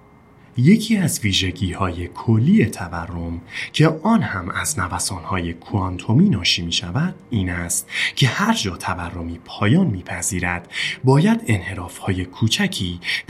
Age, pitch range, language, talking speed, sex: 30-49, 85-145 Hz, Persian, 130 wpm, male